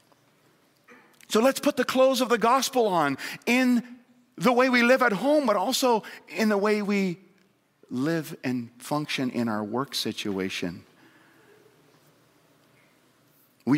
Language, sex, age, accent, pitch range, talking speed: English, male, 50-69, American, 120-190 Hz, 130 wpm